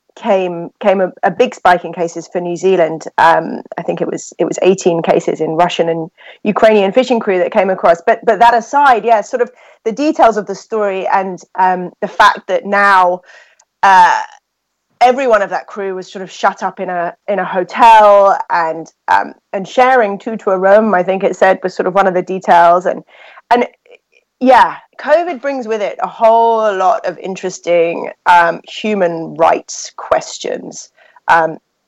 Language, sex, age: English, female, 30-49